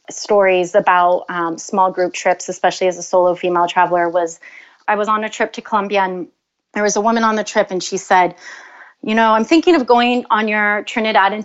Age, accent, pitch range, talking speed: 30-49, American, 185-225 Hz, 215 wpm